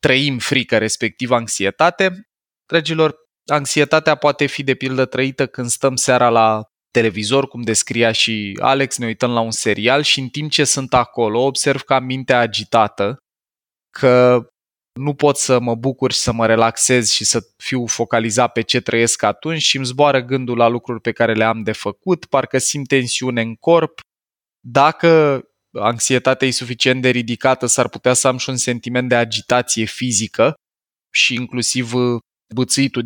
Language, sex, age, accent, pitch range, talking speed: Romanian, male, 20-39, native, 115-135 Hz, 165 wpm